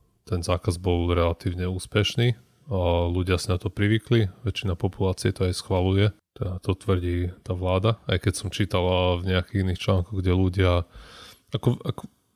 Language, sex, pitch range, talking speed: Slovak, male, 90-100 Hz, 160 wpm